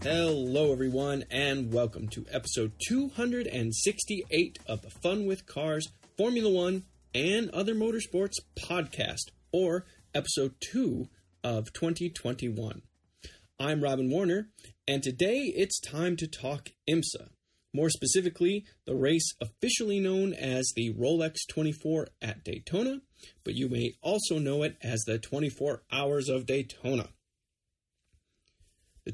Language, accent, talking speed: English, American, 120 wpm